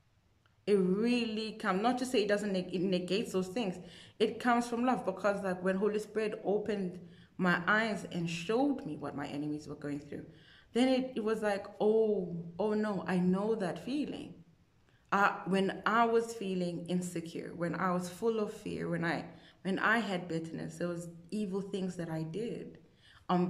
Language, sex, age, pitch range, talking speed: English, female, 20-39, 155-195 Hz, 180 wpm